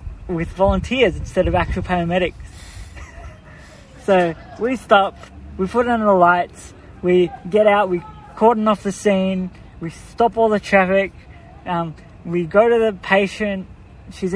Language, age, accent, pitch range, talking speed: English, 20-39, Australian, 175-215 Hz, 140 wpm